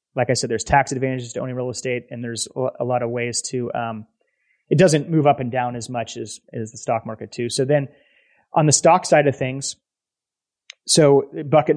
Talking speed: 215 wpm